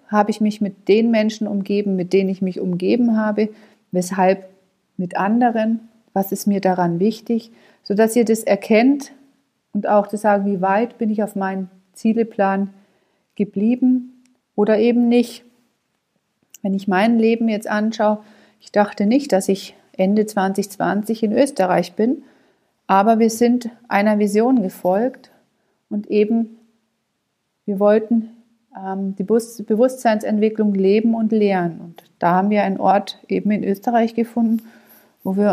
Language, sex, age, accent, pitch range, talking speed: German, female, 40-59, German, 195-230 Hz, 140 wpm